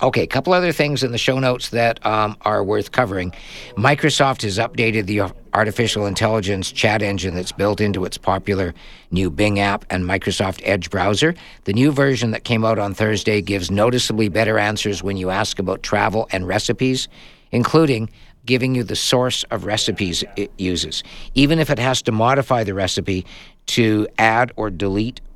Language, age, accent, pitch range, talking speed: English, 50-69, American, 100-125 Hz, 175 wpm